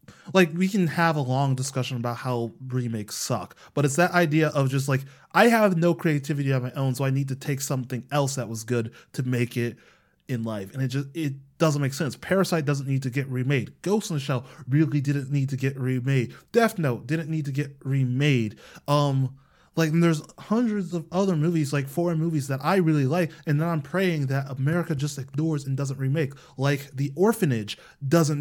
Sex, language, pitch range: male, English, 135-165 Hz